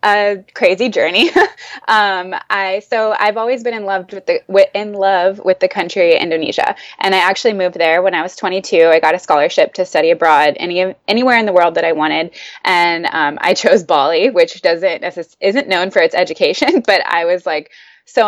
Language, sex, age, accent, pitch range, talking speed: English, female, 20-39, American, 170-225 Hz, 195 wpm